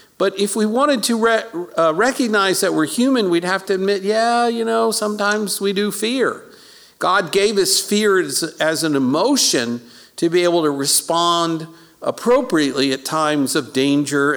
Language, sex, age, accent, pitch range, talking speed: English, male, 50-69, American, 140-205 Hz, 165 wpm